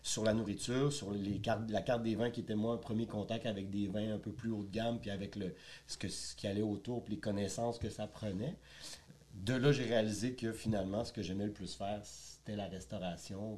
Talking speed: 225 wpm